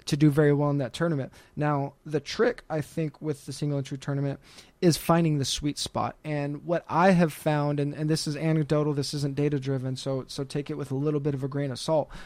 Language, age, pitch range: English, 20-39, 140-155 Hz